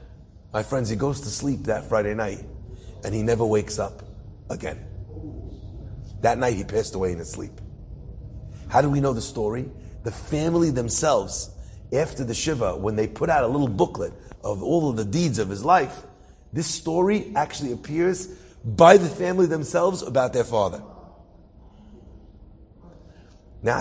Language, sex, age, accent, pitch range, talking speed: English, male, 30-49, American, 100-145 Hz, 155 wpm